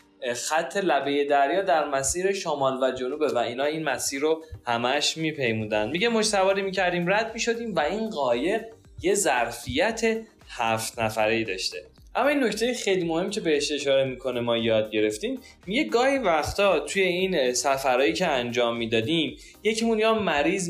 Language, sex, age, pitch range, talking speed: Persian, male, 20-39, 130-180 Hz, 155 wpm